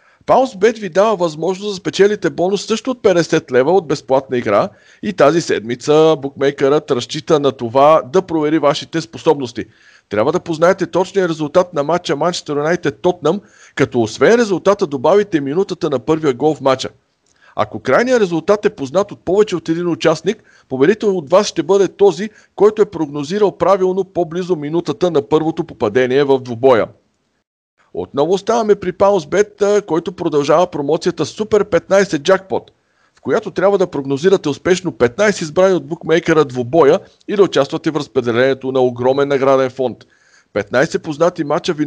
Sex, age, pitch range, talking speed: male, 50-69, 140-190 Hz, 150 wpm